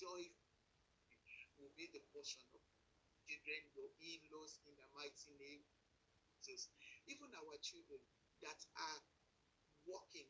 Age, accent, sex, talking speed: 50-69, Nigerian, male, 115 wpm